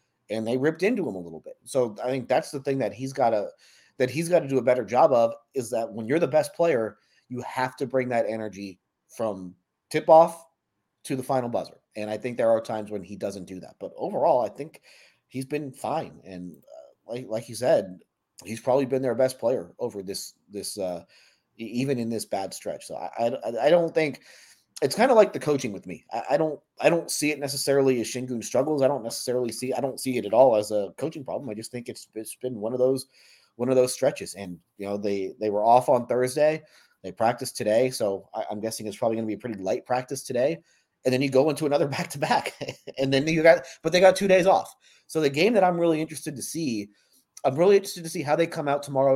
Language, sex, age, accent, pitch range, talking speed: English, male, 30-49, American, 110-145 Hz, 245 wpm